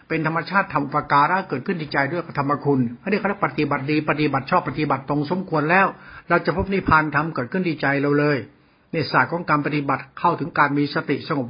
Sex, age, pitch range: male, 60-79, 150-185 Hz